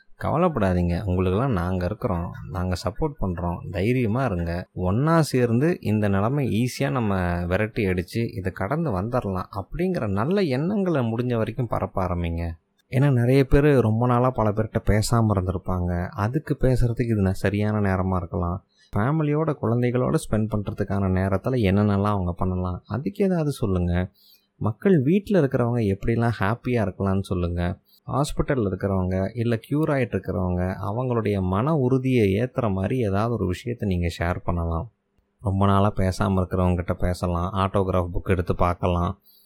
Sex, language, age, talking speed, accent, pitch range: male, Tamil, 20-39, 130 wpm, native, 95-120 Hz